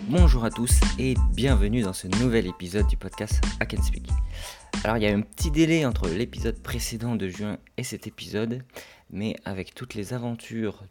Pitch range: 90-120 Hz